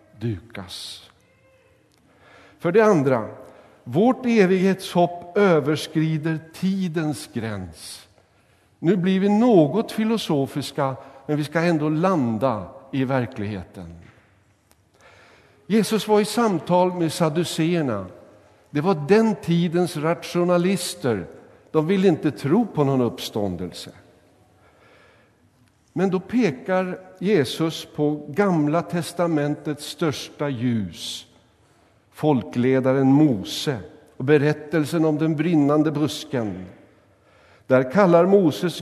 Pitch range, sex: 120-180 Hz, male